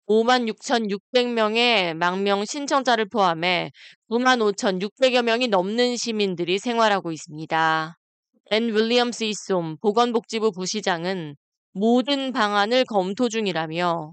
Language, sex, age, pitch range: Korean, female, 20-39, 185-240 Hz